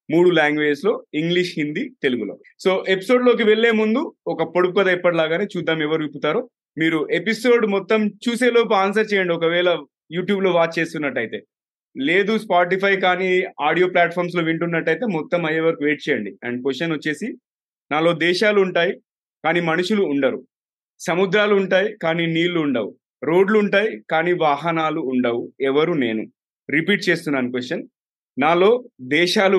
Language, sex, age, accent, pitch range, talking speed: Telugu, male, 30-49, native, 145-195 Hz, 130 wpm